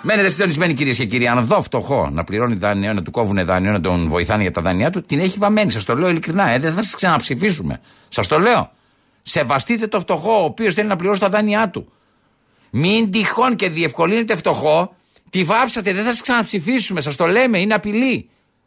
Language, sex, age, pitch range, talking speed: Greek, male, 60-79, 150-220 Hz, 205 wpm